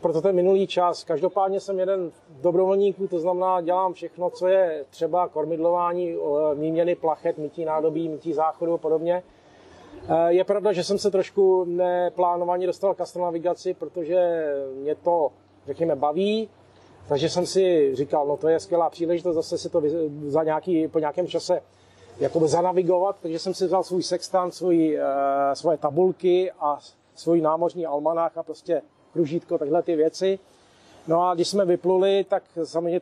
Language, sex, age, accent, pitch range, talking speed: Czech, male, 40-59, native, 160-185 Hz, 155 wpm